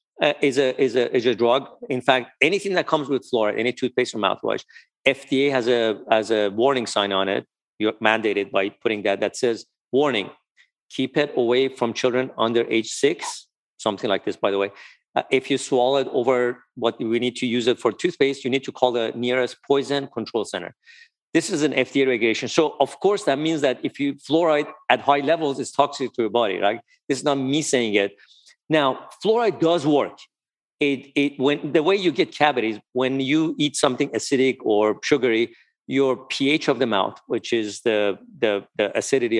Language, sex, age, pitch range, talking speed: English, male, 50-69, 120-150 Hz, 200 wpm